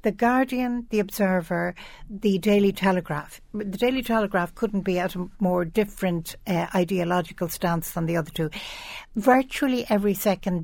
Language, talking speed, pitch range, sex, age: English, 145 wpm, 175-215 Hz, female, 60-79